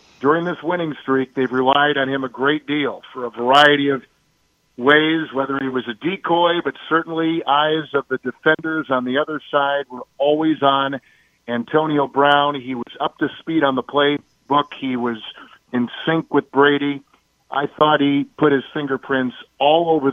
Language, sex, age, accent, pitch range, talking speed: English, male, 50-69, American, 130-150 Hz, 175 wpm